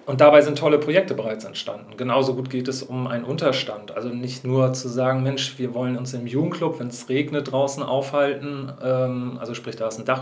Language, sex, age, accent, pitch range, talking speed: German, male, 40-59, German, 120-140 Hz, 210 wpm